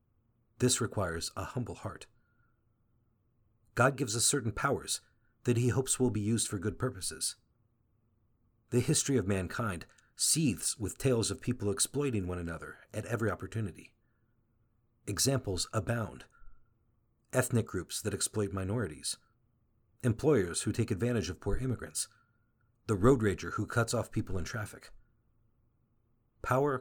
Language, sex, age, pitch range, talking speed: English, male, 50-69, 105-120 Hz, 130 wpm